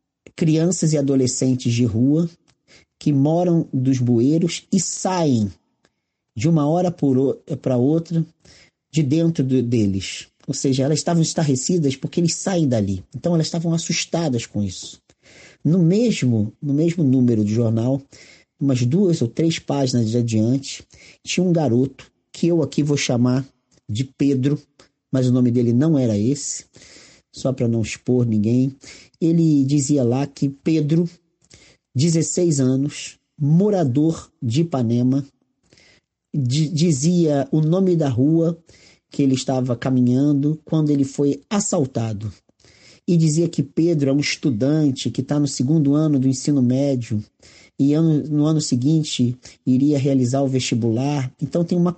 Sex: male